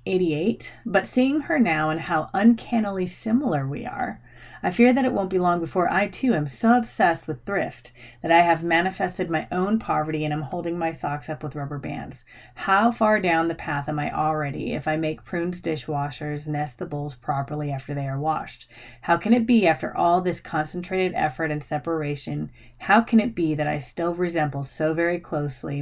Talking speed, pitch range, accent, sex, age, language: 200 wpm, 145-175 Hz, American, female, 30-49, English